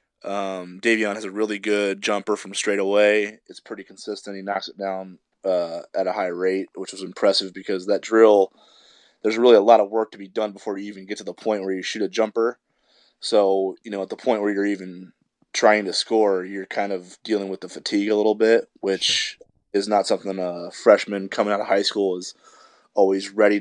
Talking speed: 215 wpm